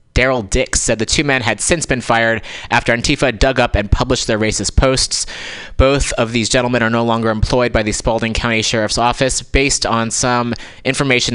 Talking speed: 195 wpm